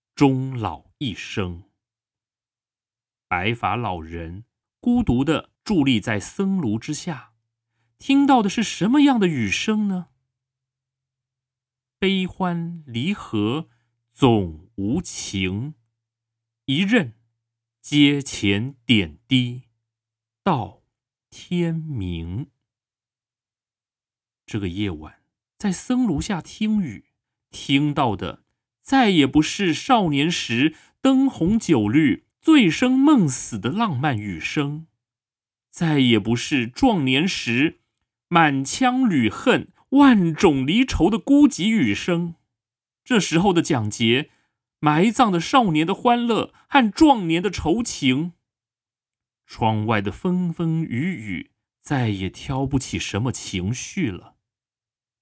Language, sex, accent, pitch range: Chinese, male, native, 115-175 Hz